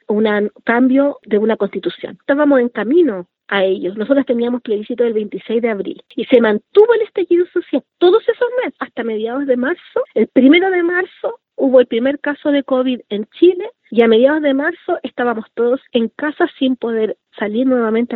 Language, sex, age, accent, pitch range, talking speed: Spanish, female, 40-59, American, 215-290 Hz, 180 wpm